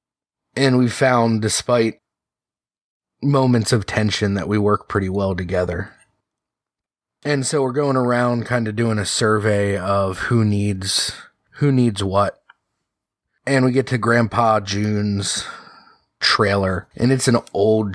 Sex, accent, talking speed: male, American, 135 wpm